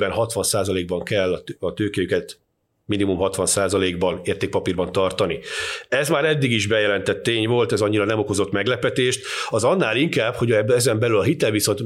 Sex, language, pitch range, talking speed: male, Hungarian, 95-110 Hz, 140 wpm